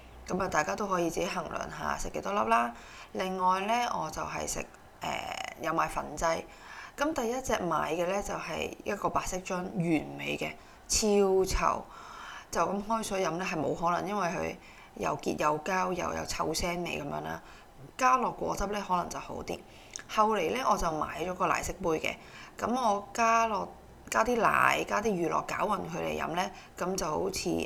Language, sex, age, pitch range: Chinese, female, 20-39, 170-230 Hz